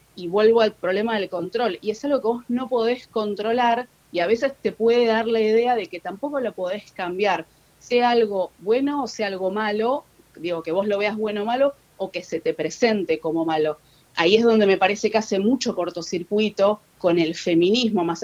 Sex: female